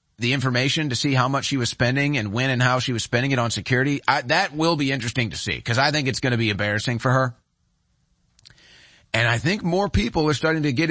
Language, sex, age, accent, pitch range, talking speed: English, male, 40-59, American, 115-160 Hz, 250 wpm